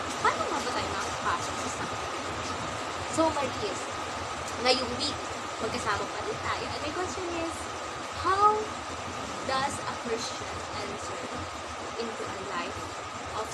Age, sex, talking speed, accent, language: 20-39, female, 130 wpm, native, Filipino